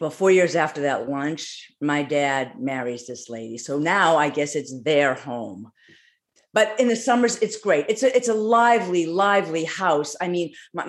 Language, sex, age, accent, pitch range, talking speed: English, female, 50-69, American, 165-240 Hz, 185 wpm